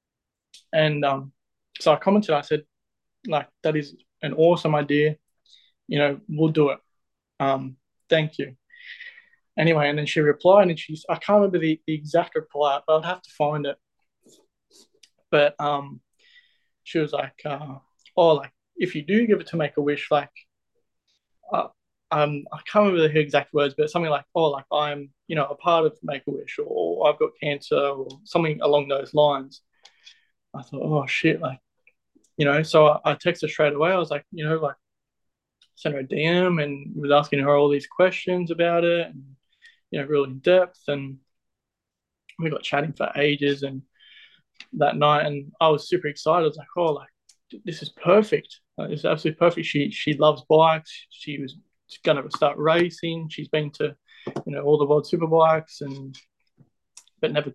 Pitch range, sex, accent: 145-170 Hz, male, Australian